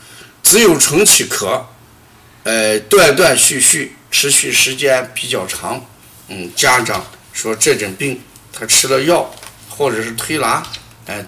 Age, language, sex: 50-69, Chinese, male